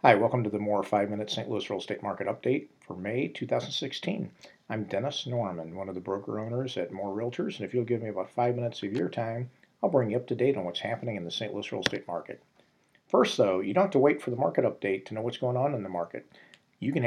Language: English